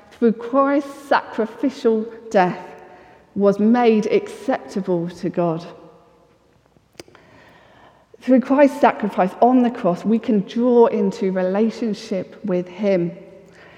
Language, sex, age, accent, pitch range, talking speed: English, female, 40-59, British, 190-250 Hz, 95 wpm